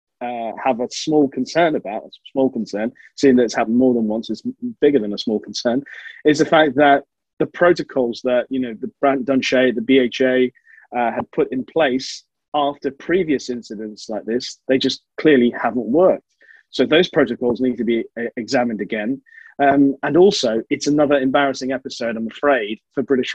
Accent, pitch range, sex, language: British, 120-145 Hz, male, English